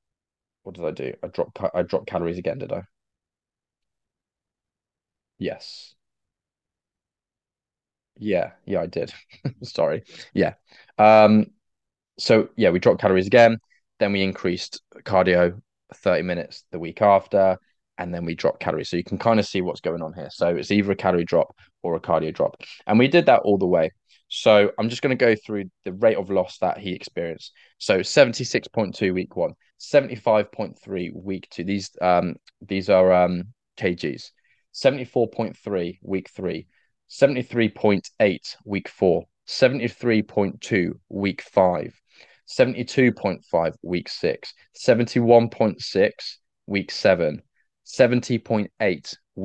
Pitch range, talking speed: 90-115 Hz, 130 wpm